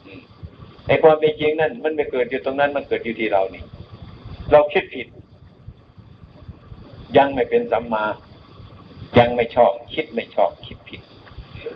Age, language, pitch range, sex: 60-79, Thai, 105-150 Hz, male